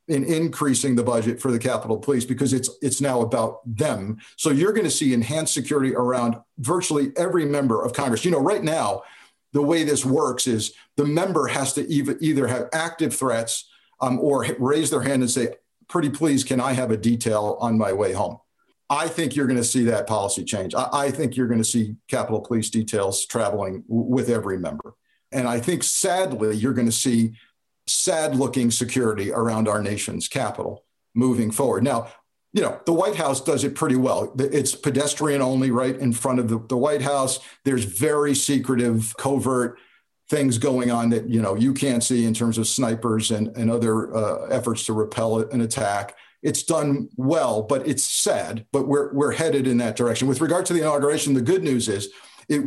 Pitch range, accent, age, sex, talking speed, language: 115-140 Hz, American, 50-69, male, 195 wpm, English